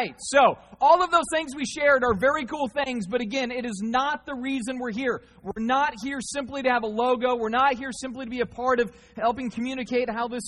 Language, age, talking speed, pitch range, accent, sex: English, 30-49, 235 wpm, 215-260 Hz, American, male